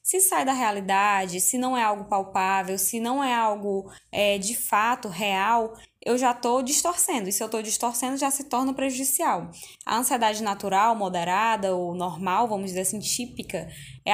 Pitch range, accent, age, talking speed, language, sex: 205-255 Hz, Brazilian, 10-29, 170 wpm, Portuguese, female